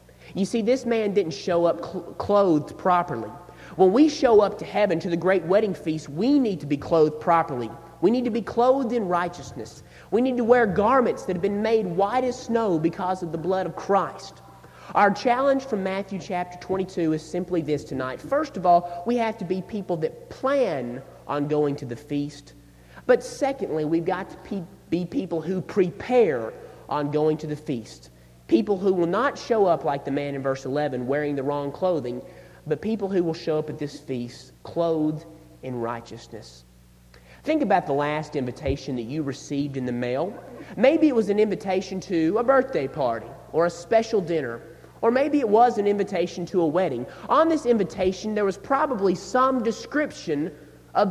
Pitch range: 145-205 Hz